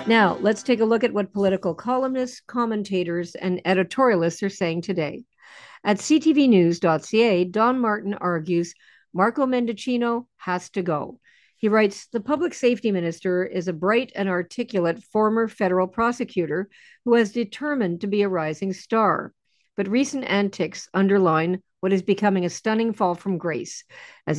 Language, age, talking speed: English, 50-69, 150 wpm